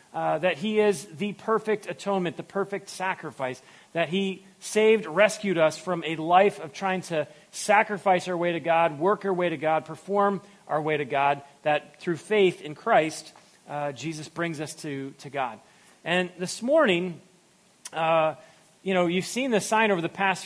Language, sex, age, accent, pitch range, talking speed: English, male, 40-59, American, 155-200 Hz, 180 wpm